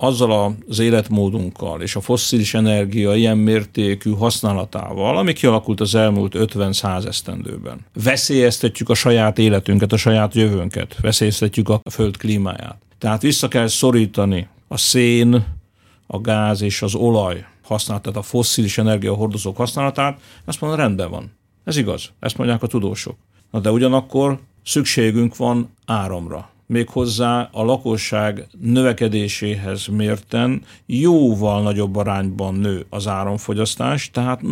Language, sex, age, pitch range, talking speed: Hungarian, male, 50-69, 105-120 Hz, 125 wpm